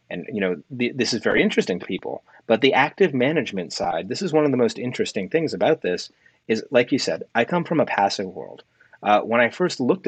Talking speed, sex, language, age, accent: 240 wpm, male, English, 30-49, American